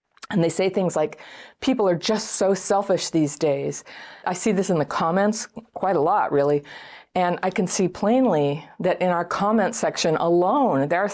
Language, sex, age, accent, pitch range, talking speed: English, female, 40-59, American, 150-200 Hz, 190 wpm